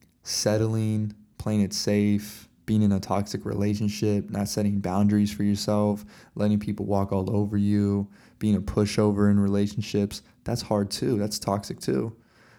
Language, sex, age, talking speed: English, male, 20-39, 150 wpm